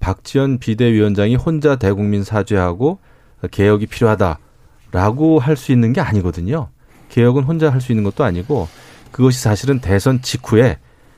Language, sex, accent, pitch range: Korean, male, native, 100-130 Hz